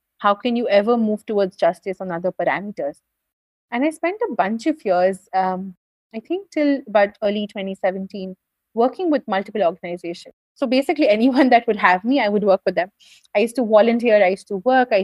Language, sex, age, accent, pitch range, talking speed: English, female, 30-49, Indian, 195-255 Hz, 195 wpm